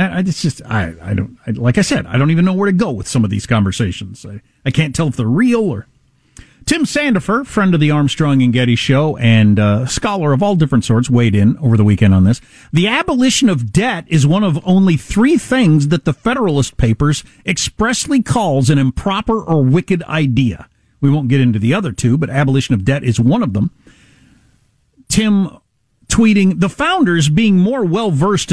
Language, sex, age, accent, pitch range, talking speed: English, male, 50-69, American, 125-195 Hz, 195 wpm